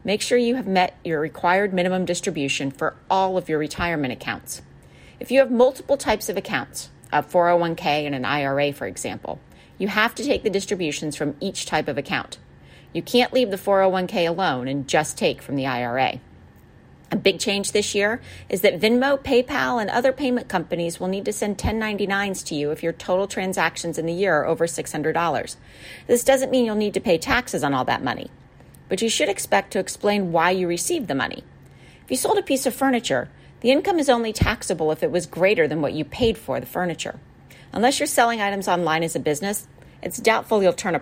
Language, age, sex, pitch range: English, 40-59, female, 155-225 Hz